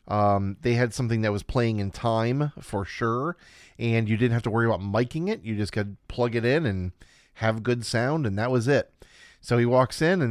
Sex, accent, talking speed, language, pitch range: male, American, 225 wpm, English, 110-135 Hz